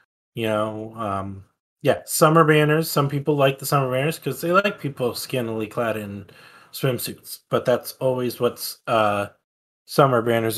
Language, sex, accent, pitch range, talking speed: English, male, American, 120-145 Hz, 145 wpm